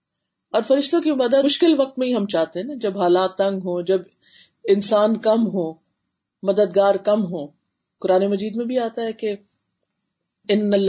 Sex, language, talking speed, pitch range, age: female, Urdu, 165 wpm, 185-255 Hz, 40-59